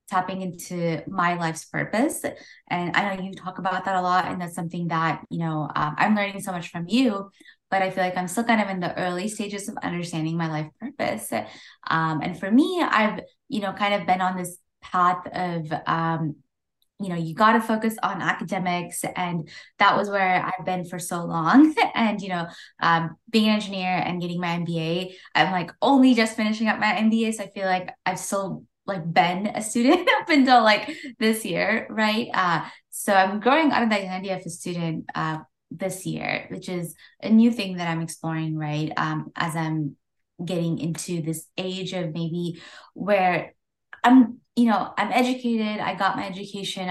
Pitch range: 170-215 Hz